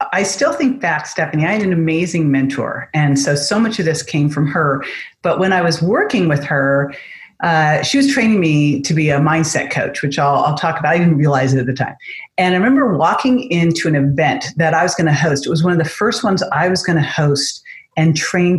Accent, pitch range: American, 155-190 Hz